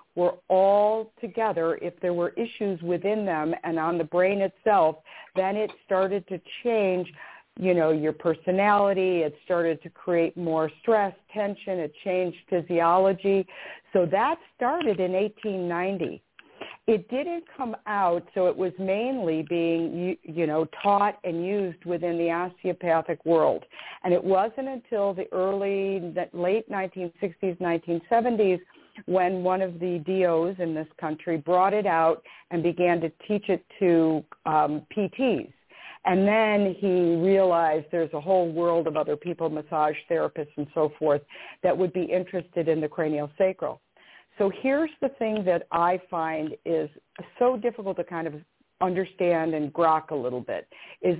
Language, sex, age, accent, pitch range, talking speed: English, female, 50-69, American, 165-200 Hz, 150 wpm